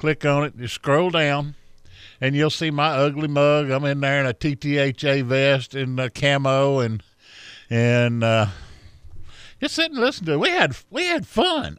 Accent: American